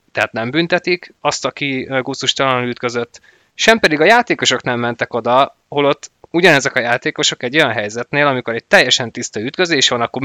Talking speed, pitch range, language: 165 wpm, 115-140 Hz, Hungarian